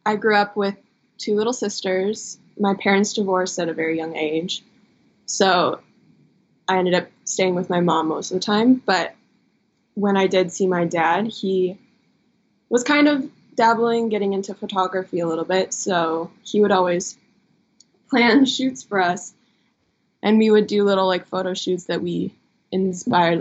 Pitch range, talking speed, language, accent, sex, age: 180-220 Hz, 165 wpm, English, American, female, 20-39